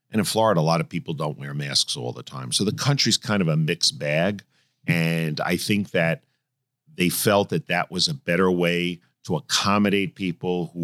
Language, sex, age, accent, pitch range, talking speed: English, male, 50-69, American, 85-145 Hz, 205 wpm